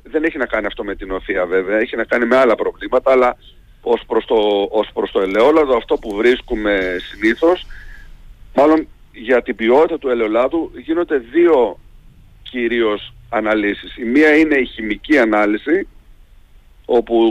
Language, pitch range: Greek, 115-165 Hz